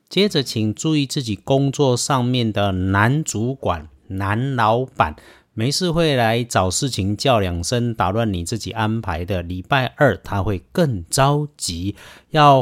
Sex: male